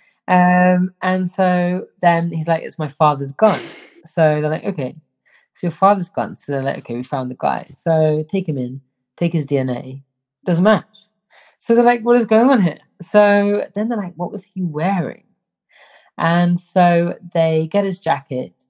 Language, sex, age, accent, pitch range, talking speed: English, female, 30-49, British, 140-180 Hz, 185 wpm